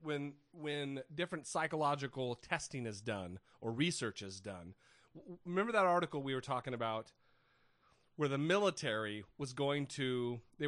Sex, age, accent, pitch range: male, 30-49, American, 115-160 Hz